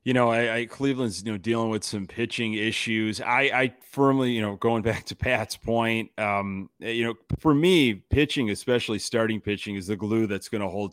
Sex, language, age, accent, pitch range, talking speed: male, English, 30-49, American, 105-130 Hz, 210 wpm